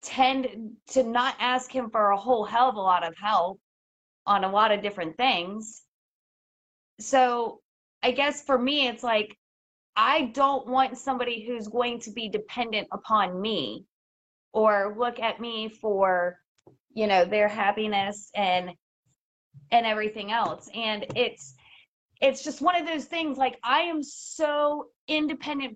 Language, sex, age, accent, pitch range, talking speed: English, female, 20-39, American, 210-260 Hz, 150 wpm